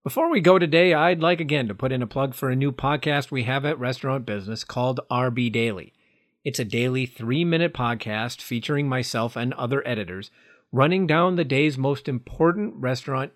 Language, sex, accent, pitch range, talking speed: English, male, American, 115-155 Hz, 185 wpm